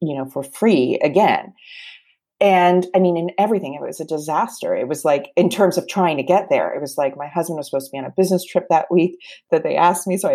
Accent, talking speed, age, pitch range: American, 260 wpm, 30-49, 160-255 Hz